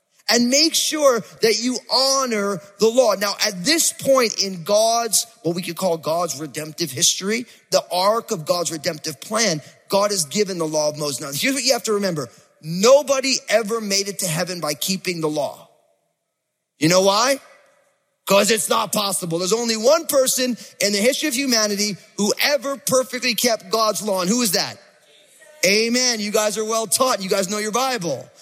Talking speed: 185 wpm